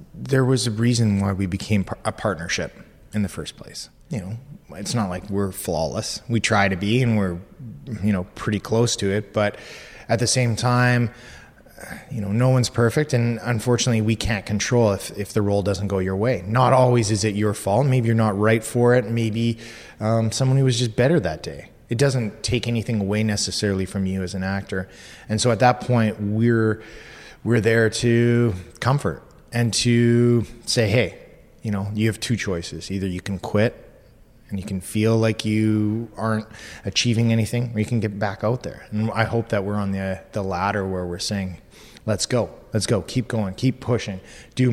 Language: English